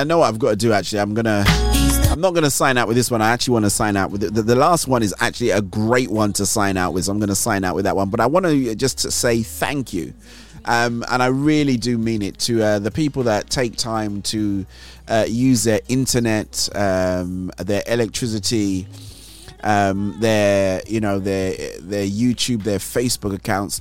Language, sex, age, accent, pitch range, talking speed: English, male, 30-49, British, 100-120 Hz, 230 wpm